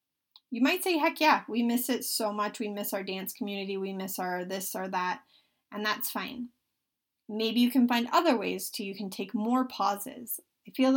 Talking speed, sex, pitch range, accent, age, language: 210 wpm, female, 215-265 Hz, American, 30-49, English